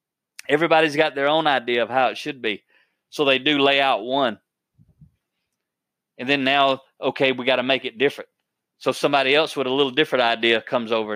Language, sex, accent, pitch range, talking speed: English, male, American, 130-160 Hz, 195 wpm